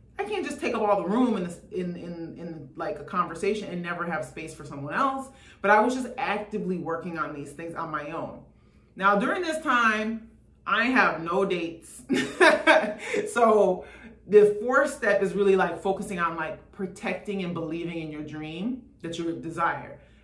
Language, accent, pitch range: English, American, 160-210 Hz